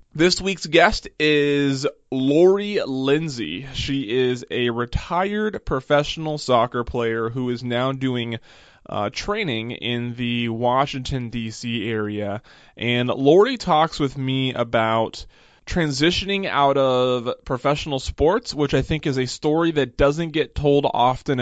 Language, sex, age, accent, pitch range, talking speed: English, male, 20-39, American, 120-140 Hz, 130 wpm